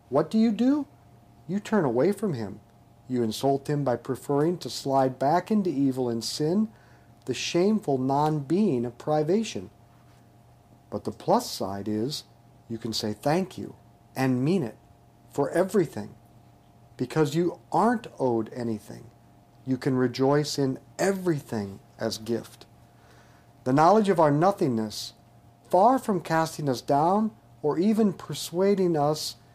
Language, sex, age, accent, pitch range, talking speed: English, male, 50-69, American, 115-150 Hz, 135 wpm